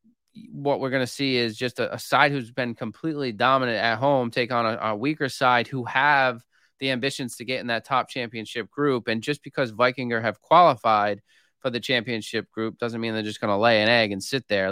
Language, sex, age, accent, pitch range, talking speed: English, male, 20-39, American, 115-135 Hz, 225 wpm